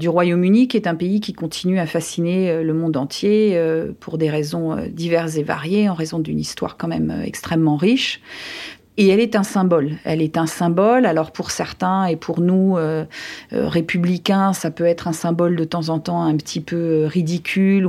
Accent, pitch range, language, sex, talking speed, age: French, 170-215 Hz, French, female, 200 wpm, 40-59